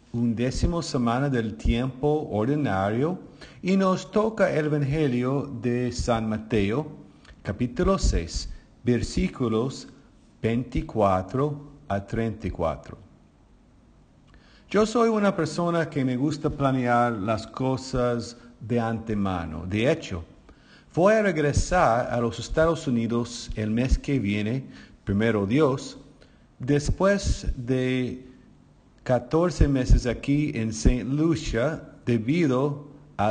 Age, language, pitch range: 50-69, English, 115-150 Hz